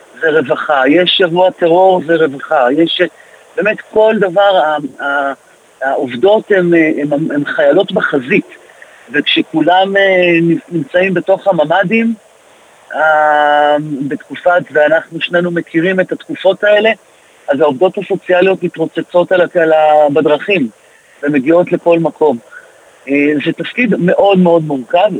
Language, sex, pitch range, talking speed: Hebrew, male, 150-185 Hz, 95 wpm